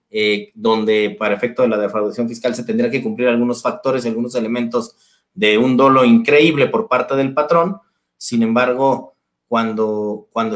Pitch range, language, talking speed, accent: 120-170 Hz, Spanish, 165 wpm, Mexican